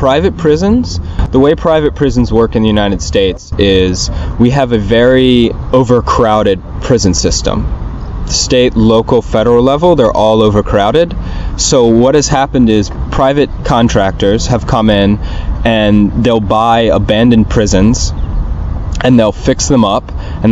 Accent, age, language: American, 20-39, German